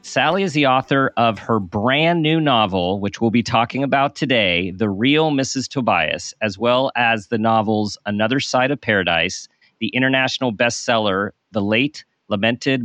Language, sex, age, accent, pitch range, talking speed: English, male, 40-59, American, 105-125 Hz, 160 wpm